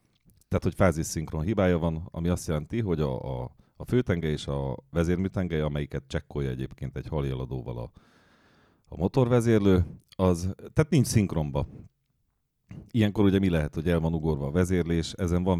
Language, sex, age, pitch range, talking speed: Hungarian, male, 40-59, 80-95 Hz, 150 wpm